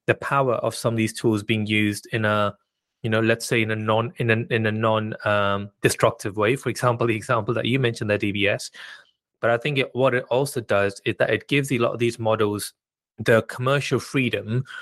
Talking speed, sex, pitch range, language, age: 225 wpm, male, 105-125 Hz, English, 20-39